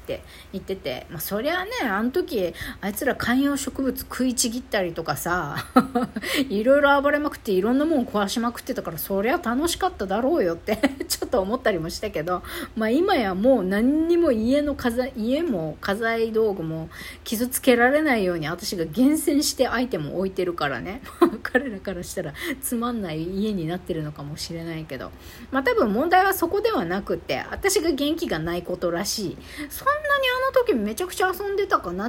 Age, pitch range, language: 40-59, 185-295 Hz, Japanese